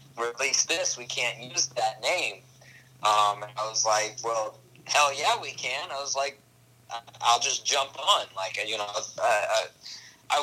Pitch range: 105-130 Hz